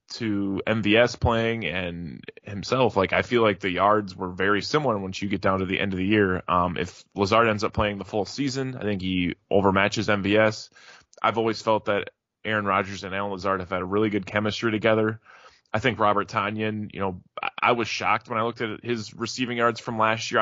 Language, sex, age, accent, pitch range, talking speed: English, male, 20-39, American, 100-115 Hz, 215 wpm